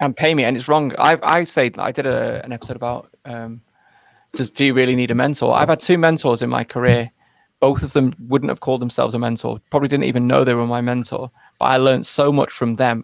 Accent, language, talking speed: British, English, 250 wpm